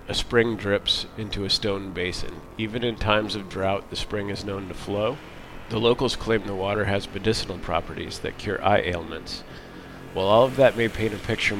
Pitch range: 95-110 Hz